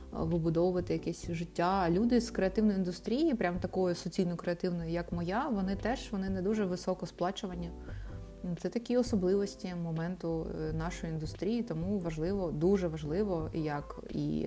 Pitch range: 160-195 Hz